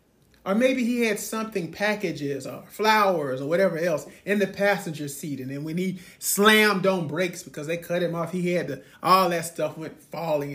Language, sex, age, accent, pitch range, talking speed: English, male, 40-59, American, 140-210 Hz, 195 wpm